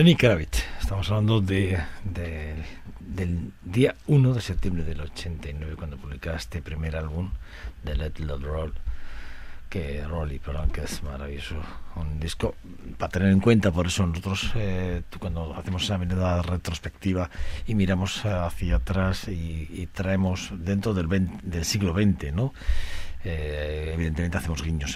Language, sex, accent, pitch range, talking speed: Spanish, male, Spanish, 80-95 Hz, 145 wpm